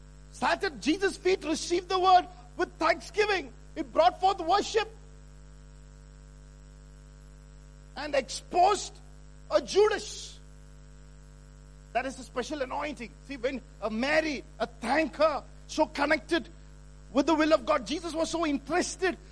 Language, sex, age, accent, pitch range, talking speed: English, male, 50-69, Indian, 240-310 Hz, 120 wpm